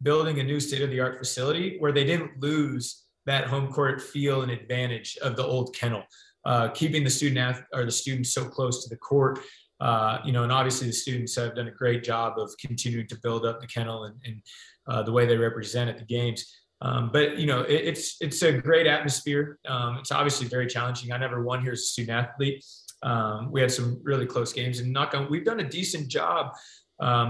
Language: English